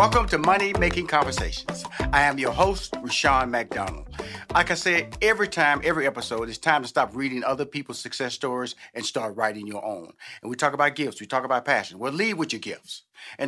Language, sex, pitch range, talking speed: English, male, 140-170 Hz, 210 wpm